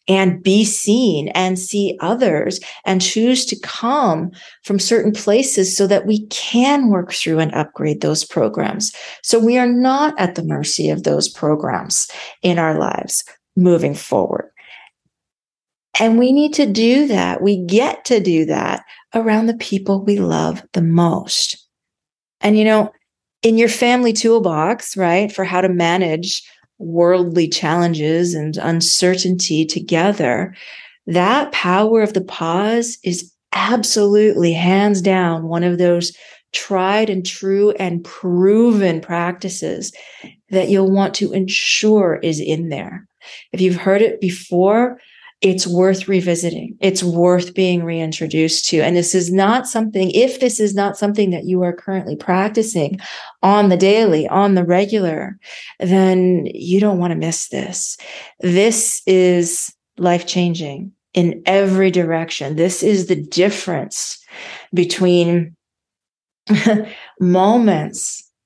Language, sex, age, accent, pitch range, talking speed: English, female, 40-59, American, 175-215 Hz, 135 wpm